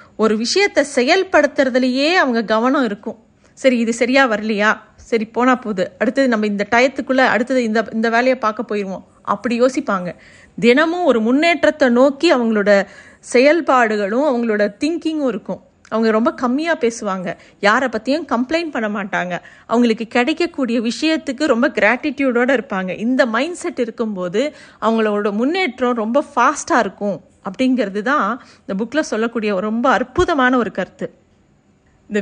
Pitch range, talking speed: 210-275 Hz, 125 wpm